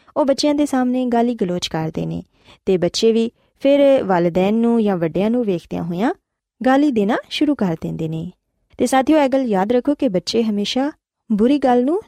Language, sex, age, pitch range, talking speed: Punjabi, female, 20-39, 185-265 Hz, 185 wpm